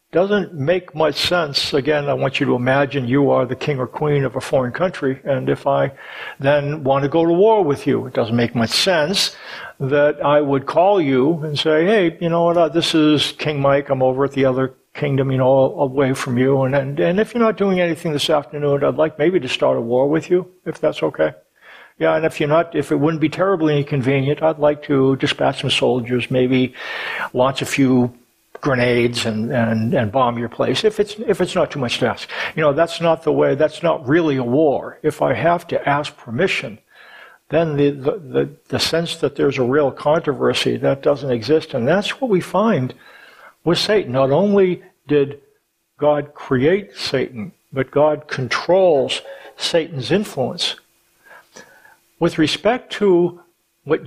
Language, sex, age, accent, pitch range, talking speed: English, male, 60-79, American, 130-165 Hz, 195 wpm